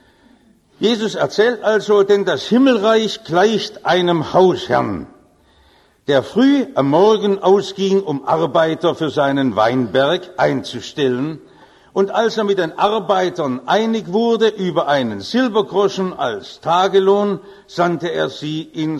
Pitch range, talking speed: 145-205 Hz, 115 wpm